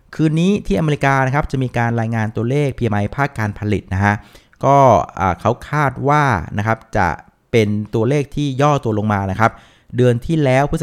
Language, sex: Thai, male